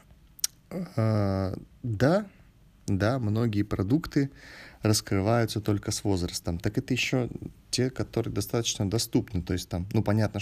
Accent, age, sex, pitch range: native, 20-39, male, 95-110 Hz